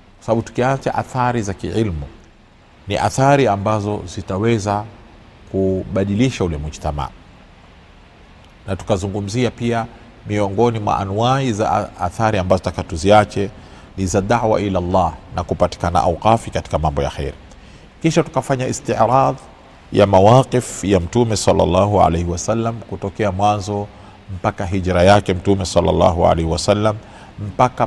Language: Swahili